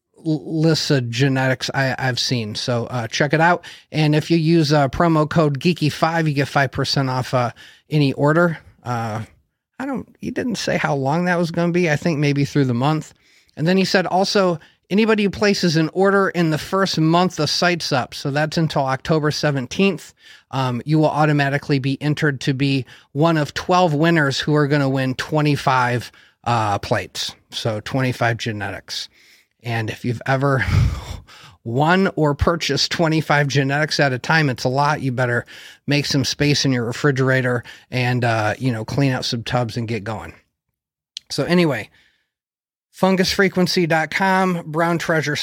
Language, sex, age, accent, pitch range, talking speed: English, male, 30-49, American, 130-165 Hz, 170 wpm